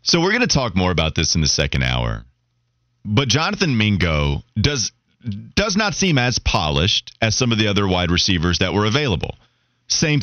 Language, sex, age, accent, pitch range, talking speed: English, male, 30-49, American, 110-155 Hz, 190 wpm